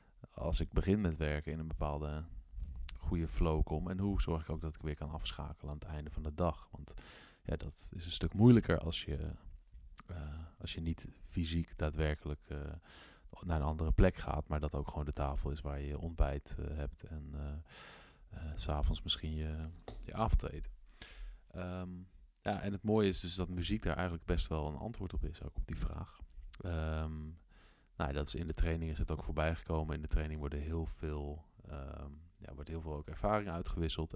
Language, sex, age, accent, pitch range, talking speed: Dutch, male, 20-39, Dutch, 75-90 Hz, 190 wpm